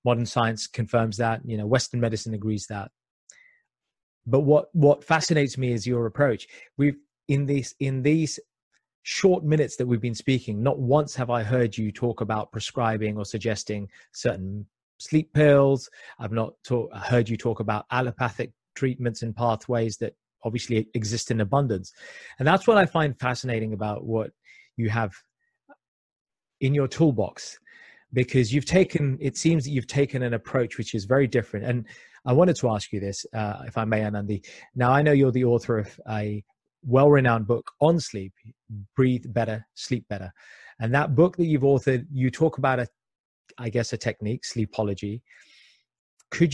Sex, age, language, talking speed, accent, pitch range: male, 30-49, English, 165 wpm, British, 115-145 Hz